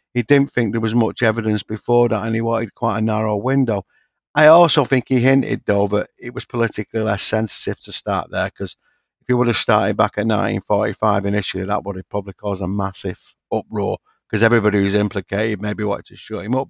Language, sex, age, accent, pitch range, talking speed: English, male, 50-69, British, 105-130 Hz, 210 wpm